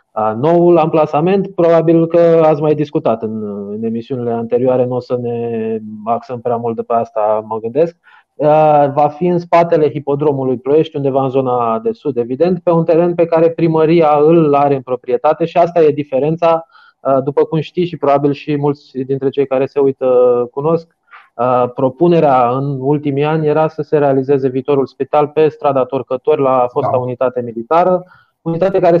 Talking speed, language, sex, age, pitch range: 165 wpm, Romanian, male, 20-39, 135-170 Hz